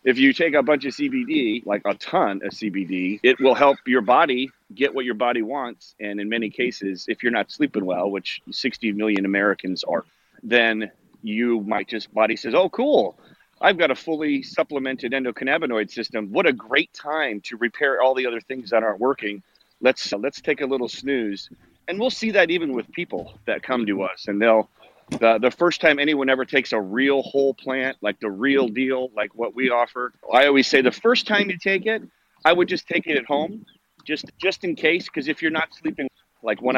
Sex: male